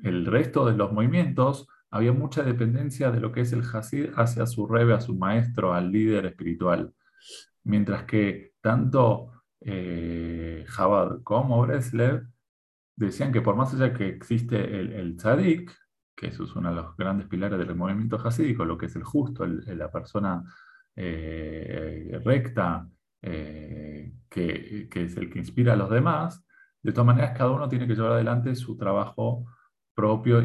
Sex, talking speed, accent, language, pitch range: male, 160 wpm, Argentinian, Spanish, 90-120 Hz